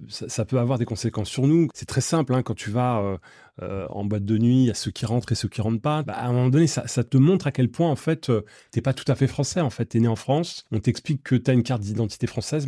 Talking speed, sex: 320 wpm, male